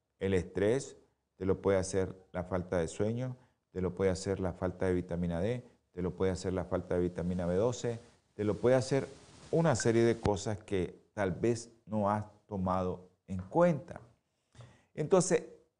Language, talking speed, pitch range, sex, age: Spanish, 170 wpm, 90-125 Hz, male, 50-69